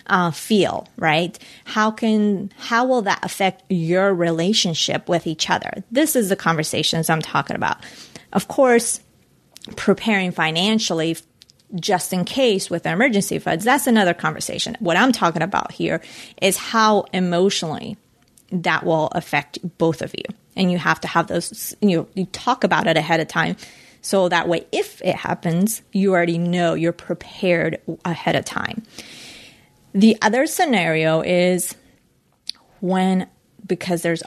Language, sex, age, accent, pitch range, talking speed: English, female, 30-49, American, 170-215 Hz, 155 wpm